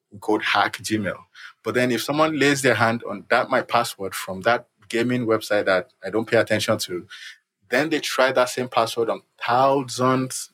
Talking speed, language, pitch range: 180 wpm, English, 105-125 Hz